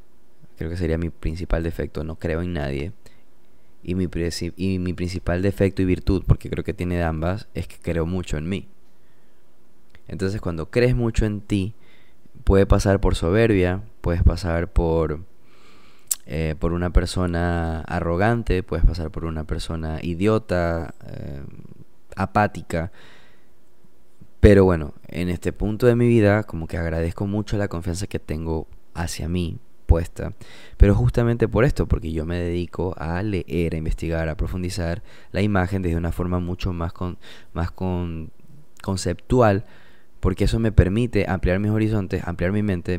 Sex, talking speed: male, 150 wpm